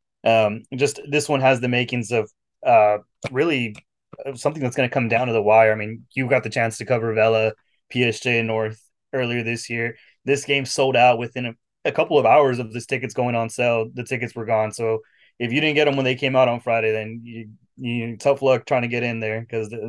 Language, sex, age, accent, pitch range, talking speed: English, male, 20-39, American, 110-125 Hz, 230 wpm